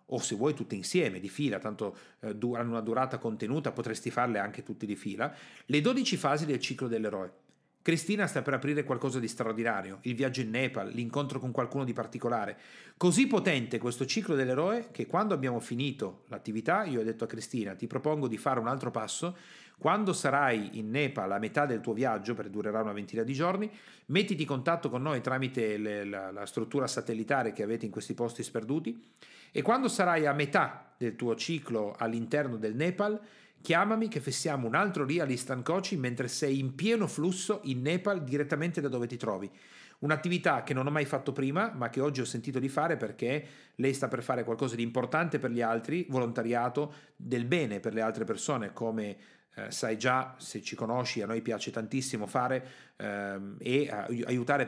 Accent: native